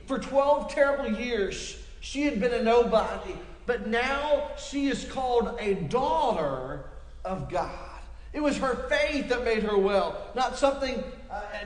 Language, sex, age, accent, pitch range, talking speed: English, male, 40-59, American, 190-265 Hz, 150 wpm